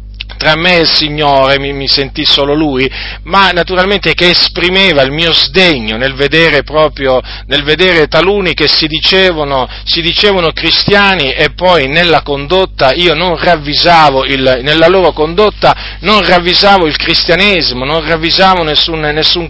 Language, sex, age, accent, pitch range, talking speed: Italian, male, 40-59, native, 135-175 Hz, 140 wpm